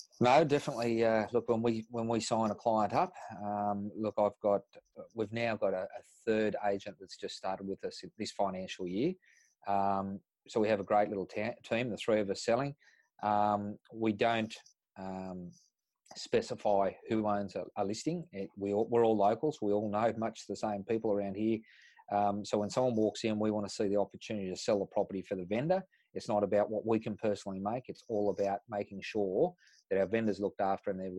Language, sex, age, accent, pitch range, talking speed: English, male, 30-49, Australian, 100-110 Hz, 210 wpm